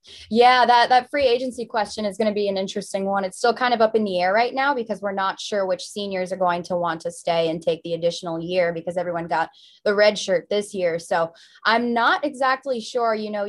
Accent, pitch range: American, 175-215 Hz